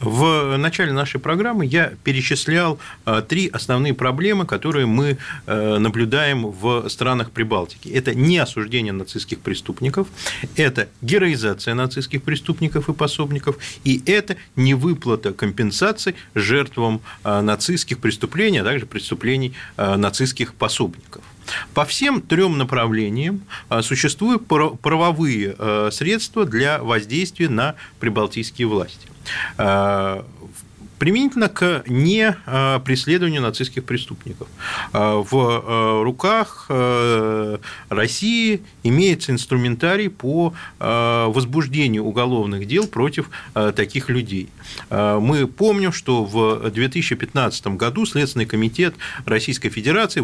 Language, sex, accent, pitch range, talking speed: Russian, male, native, 110-155 Hz, 95 wpm